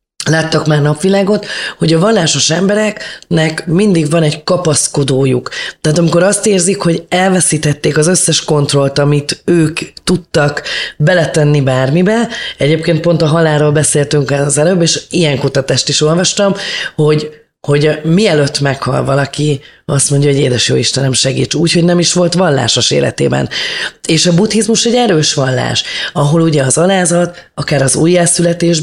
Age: 20-39